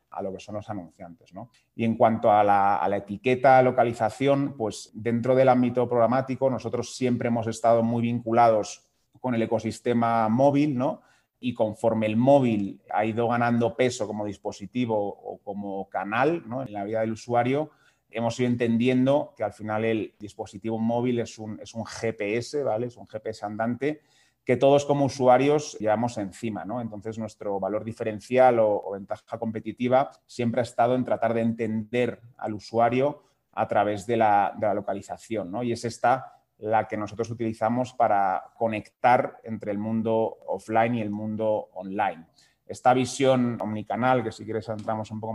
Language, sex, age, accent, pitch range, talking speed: Spanish, male, 30-49, Spanish, 110-125 Hz, 165 wpm